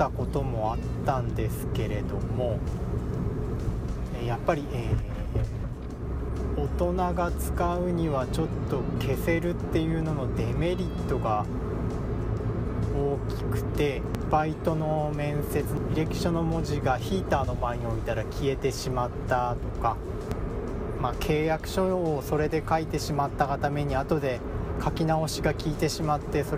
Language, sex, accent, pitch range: Japanese, male, native, 105-155 Hz